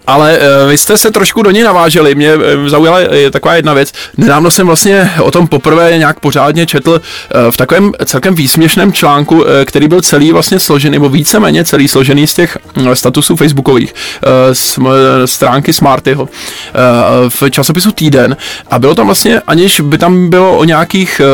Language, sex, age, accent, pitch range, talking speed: Czech, male, 20-39, native, 130-155 Hz, 160 wpm